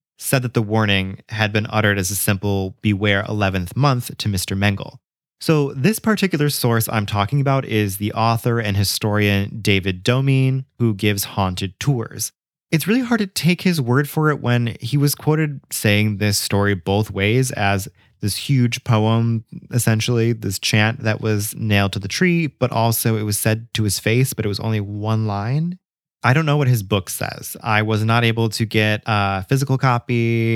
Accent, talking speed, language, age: American, 185 wpm, English, 20-39